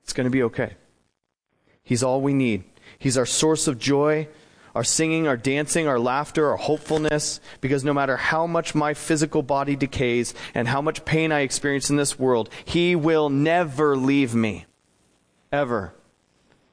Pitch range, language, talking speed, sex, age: 110-140 Hz, English, 165 wpm, male, 30-49